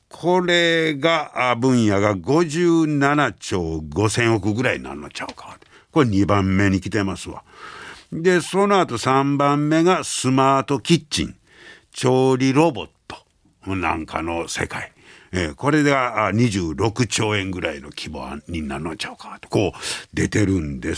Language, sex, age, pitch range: Japanese, male, 60-79, 90-130 Hz